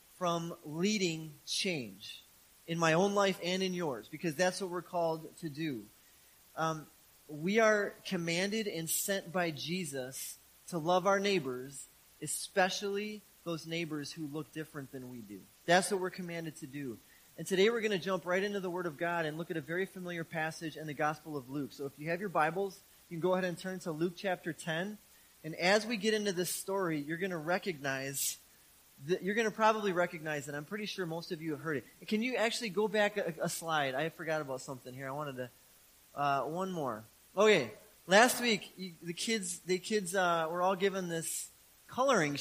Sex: male